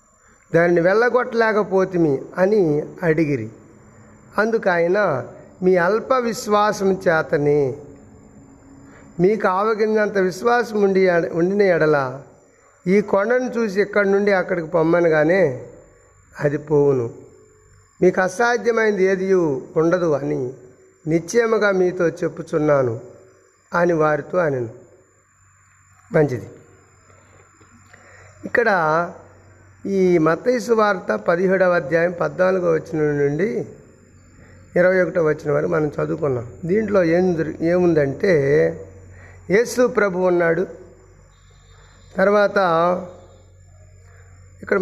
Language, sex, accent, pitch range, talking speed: Telugu, male, native, 115-190 Hz, 80 wpm